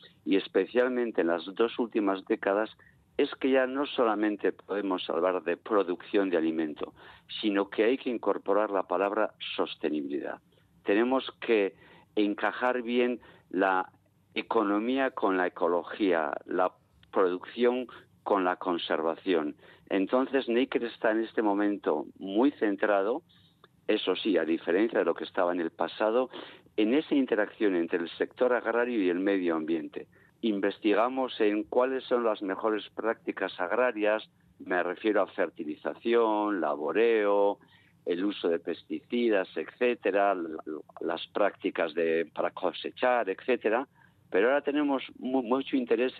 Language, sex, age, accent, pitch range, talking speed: Spanish, male, 50-69, Spanish, 95-125 Hz, 125 wpm